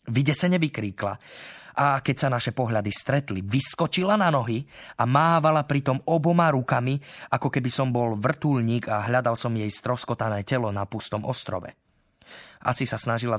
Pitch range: 105-135 Hz